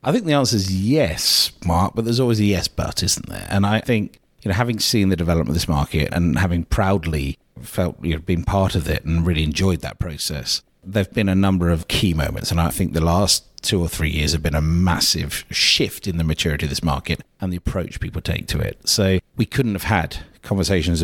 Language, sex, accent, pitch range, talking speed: English, male, British, 85-100 Hz, 235 wpm